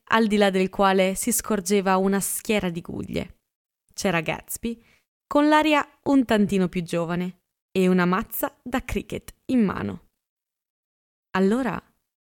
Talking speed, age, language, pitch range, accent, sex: 130 wpm, 20-39, Italian, 185-245 Hz, native, female